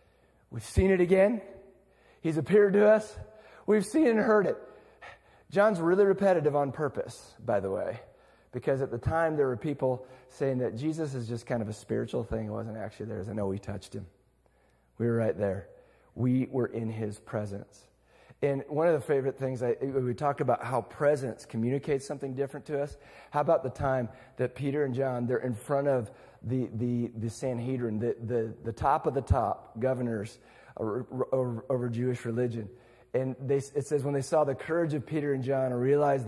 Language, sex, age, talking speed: English, male, 40-59, 195 wpm